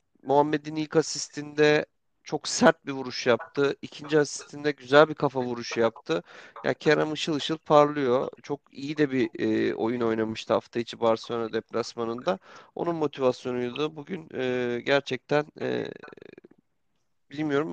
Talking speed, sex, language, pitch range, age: 130 wpm, male, Turkish, 120-145 Hz, 40-59